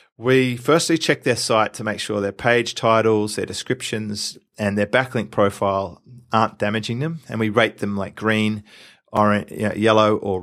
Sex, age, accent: male, 30-49, Australian